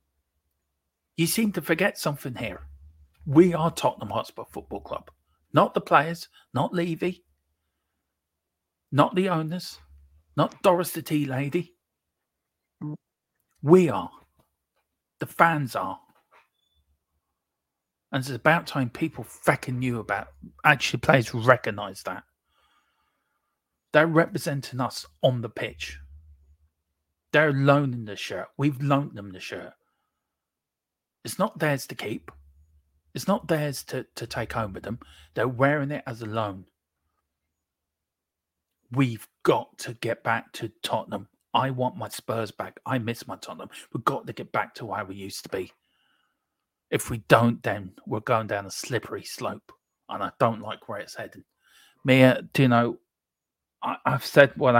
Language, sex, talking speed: English, male, 140 wpm